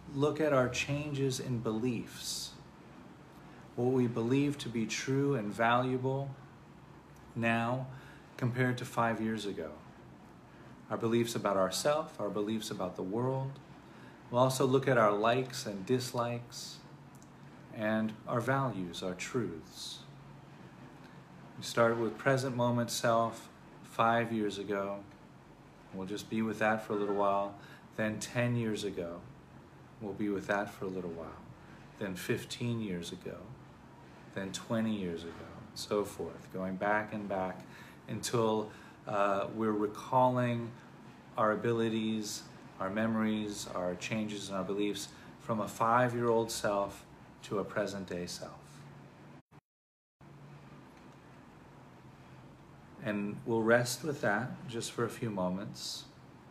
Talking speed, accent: 125 wpm, American